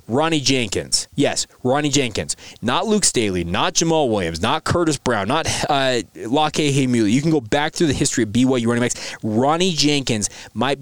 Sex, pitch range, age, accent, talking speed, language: male, 120-155 Hz, 20-39, American, 180 wpm, English